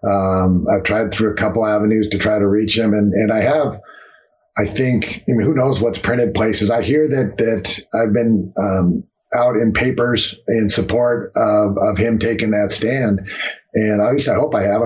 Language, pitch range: English, 105-125 Hz